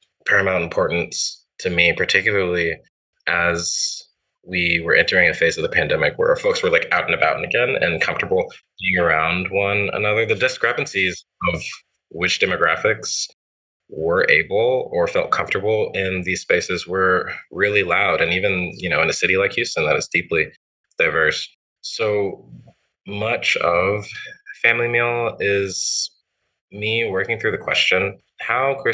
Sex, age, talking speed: male, 20-39, 145 wpm